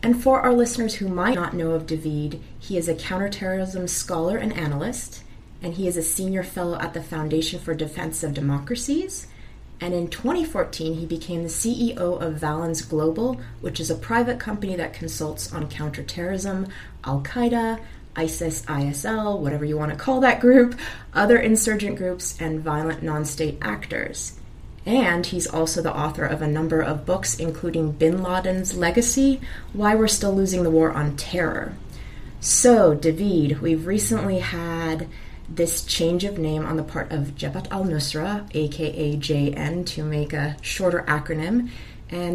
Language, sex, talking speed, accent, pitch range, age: English, female, 155 wpm, American, 155-210 Hz, 30-49